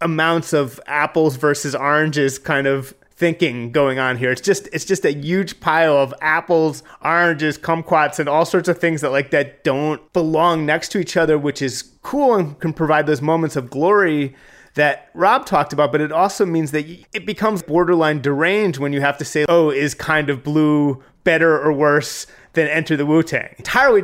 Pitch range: 150-185 Hz